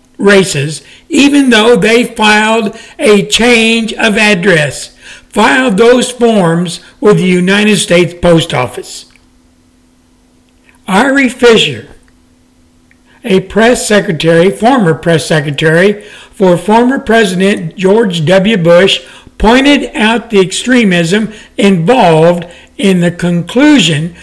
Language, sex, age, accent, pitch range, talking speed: English, male, 60-79, American, 160-220 Hz, 100 wpm